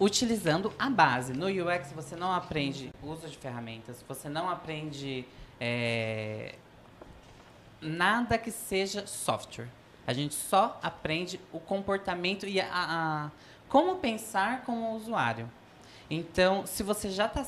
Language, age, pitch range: Portuguese, 20-39, 140-195 Hz